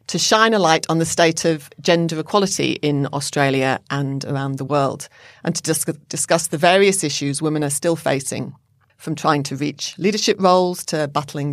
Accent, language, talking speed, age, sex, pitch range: British, English, 175 wpm, 40-59, female, 140-165 Hz